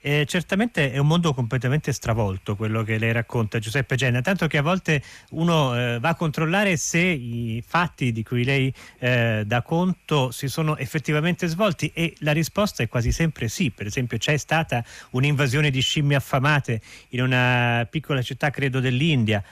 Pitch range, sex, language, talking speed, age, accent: 115-155 Hz, male, Italian, 170 wpm, 30-49, native